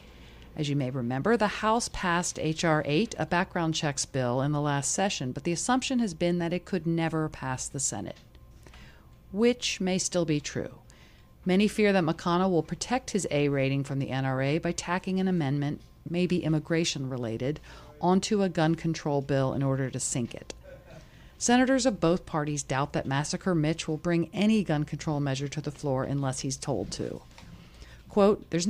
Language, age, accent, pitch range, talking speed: English, 40-59, American, 135-180 Hz, 180 wpm